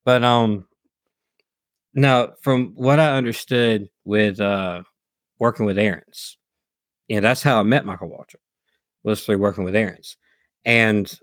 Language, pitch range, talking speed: English, 95-120 Hz, 145 wpm